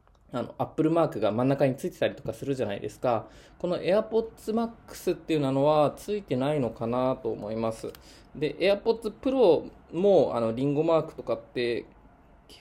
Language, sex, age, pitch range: Japanese, male, 20-39, 120-170 Hz